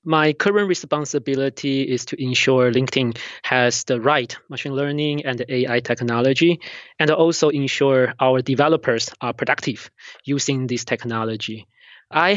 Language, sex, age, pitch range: English, male, 20-39, 125-145 Hz